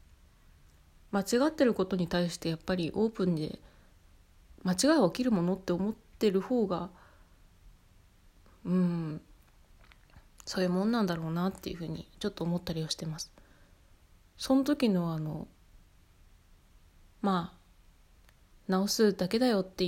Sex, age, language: female, 20-39, Japanese